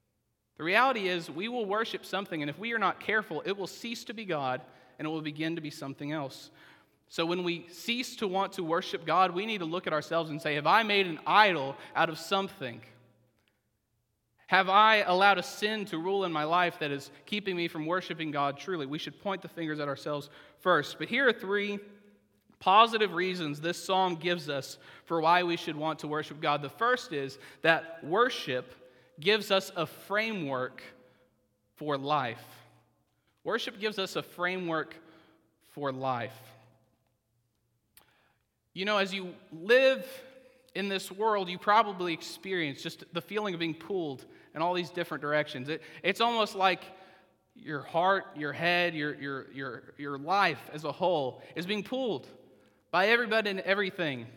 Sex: male